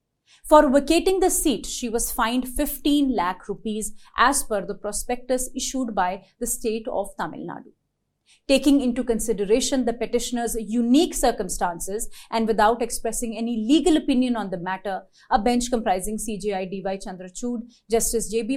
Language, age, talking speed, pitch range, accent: English, 30-49, 150 wpm, 215-255 Hz, Indian